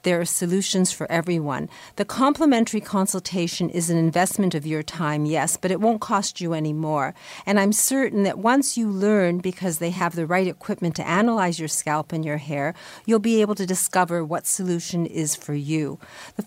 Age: 50-69